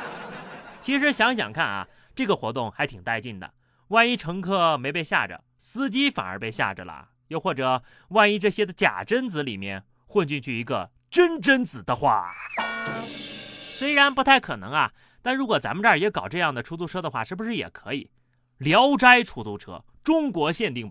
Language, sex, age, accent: Chinese, male, 30-49, native